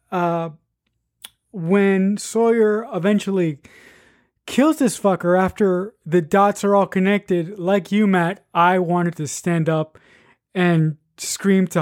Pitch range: 165-200 Hz